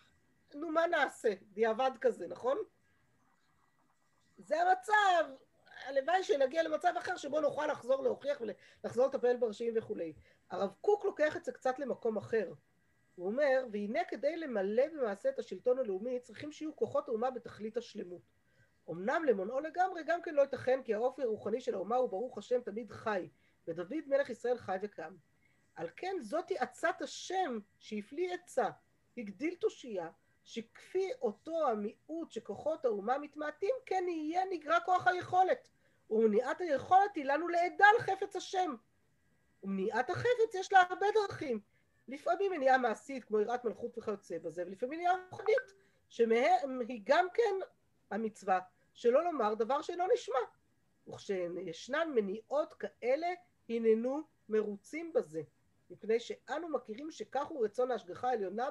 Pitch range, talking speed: 225-360 Hz, 135 wpm